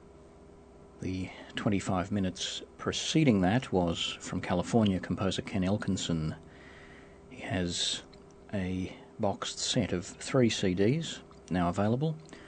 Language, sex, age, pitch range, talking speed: English, male, 50-69, 85-115 Hz, 100 wpm